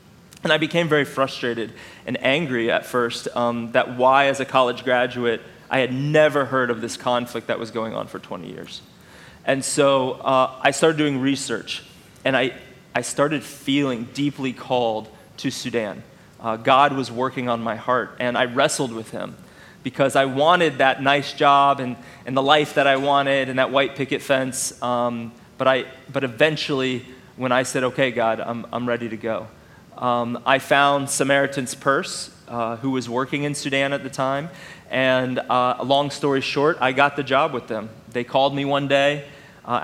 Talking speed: 185 wpm